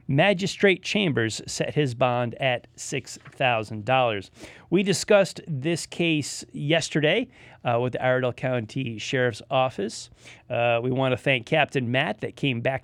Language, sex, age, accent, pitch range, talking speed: English, male, 40-59, American, 125-160 Hz, 135 wpm